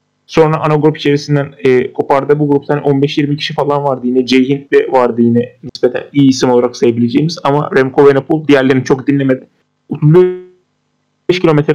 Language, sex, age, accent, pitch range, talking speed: Turkish, male, 30-49, native, 135-160 Hz, 150 wpm